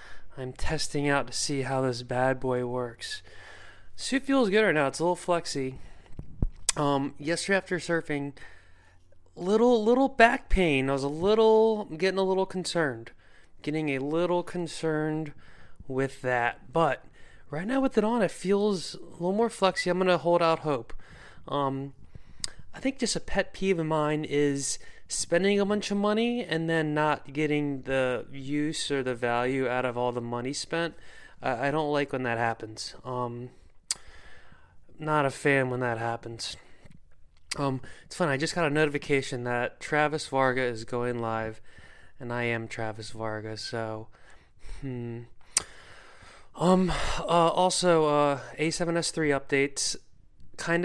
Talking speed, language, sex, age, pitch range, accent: 155 wpm, English, male, 20-39, 125-170 Hz, American